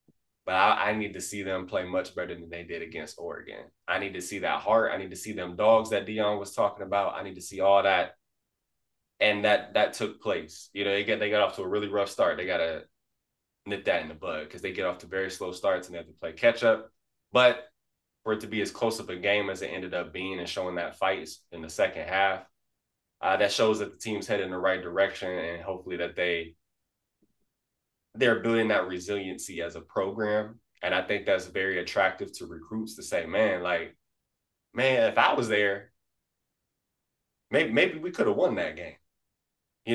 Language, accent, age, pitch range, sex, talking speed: English, American, 20-39, 90-110 Hz, male, 225 wpm